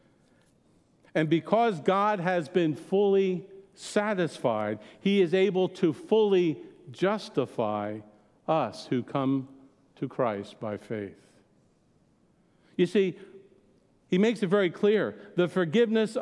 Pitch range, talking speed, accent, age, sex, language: 140-210 Hz, 105 wpm, American, 50-69, male, English